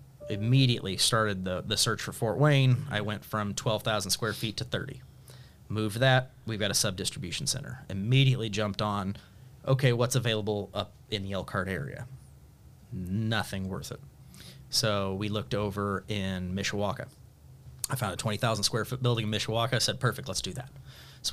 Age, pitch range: 30-49, 105-130 Hz